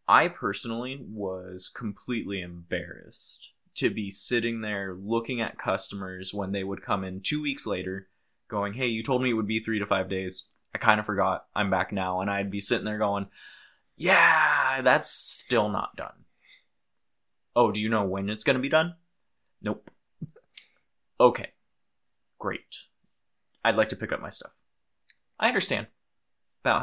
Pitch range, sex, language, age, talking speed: 95-110 Hz, male, English, 20-39, 165 wpm